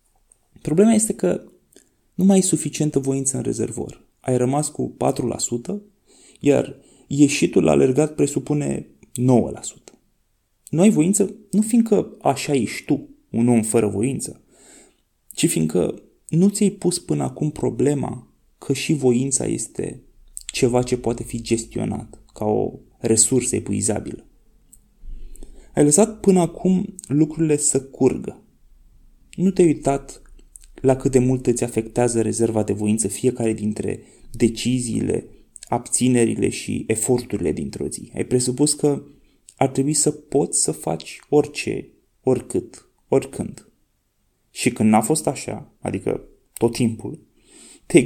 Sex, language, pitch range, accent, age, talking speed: male, Romanian, 115-175 Hz, native, 20-39, 125 wpm